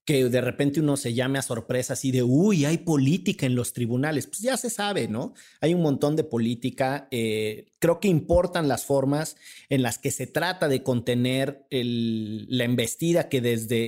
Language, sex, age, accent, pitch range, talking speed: Spanish, male, 40-59, Mexican, 125-165 Hz, 190 wpm